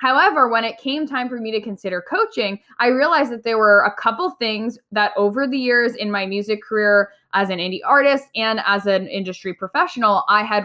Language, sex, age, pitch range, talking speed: English, female, 10-29, 200-260 Hz, 210 wpm